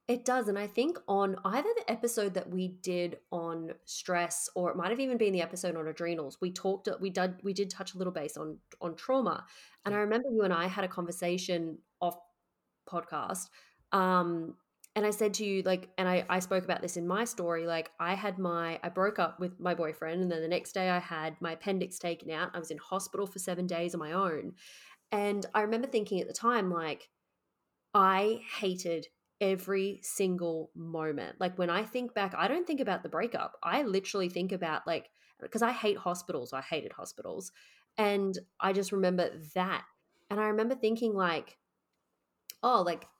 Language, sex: English, female